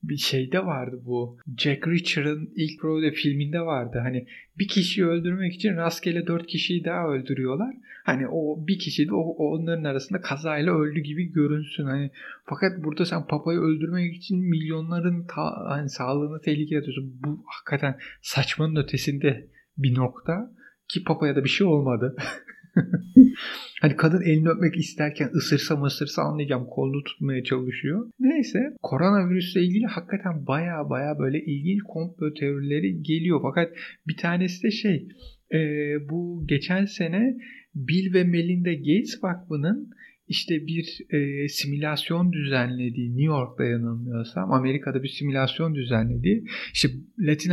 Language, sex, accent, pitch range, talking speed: Turkish, male, native, 135-175 Hz, 135 wpm